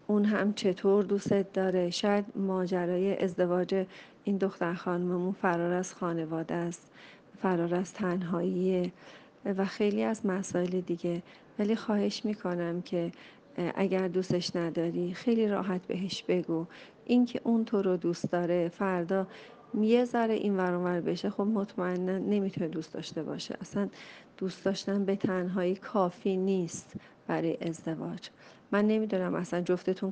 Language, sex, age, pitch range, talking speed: Persian, female, 40-59, 180-205 Hz, 130 wpm